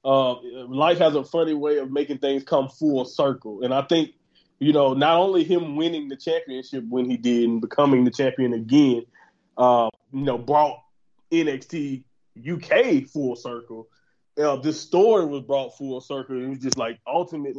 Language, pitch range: English, 135-165 Hz